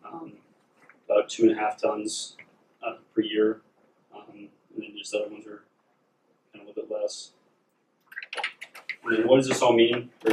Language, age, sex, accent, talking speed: English, 20-39, male, American, 175 wpm